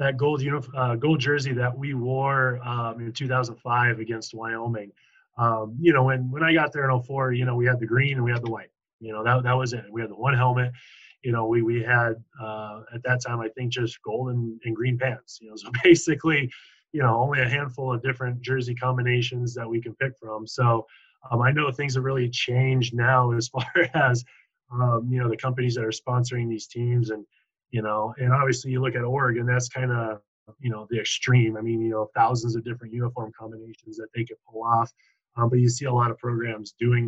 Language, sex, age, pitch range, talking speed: English, male, 20-39, 115-130 Hz, 230 wpm